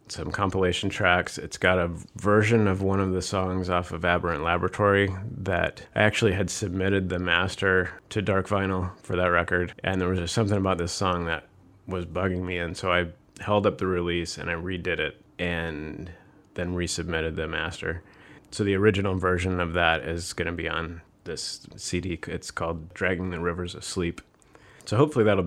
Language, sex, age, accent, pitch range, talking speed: English, male, 30-49, American, 85-95 Hz, 190 wpm